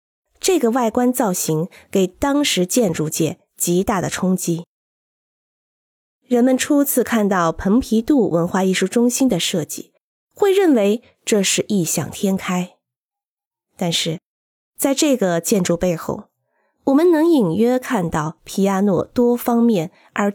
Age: 20-39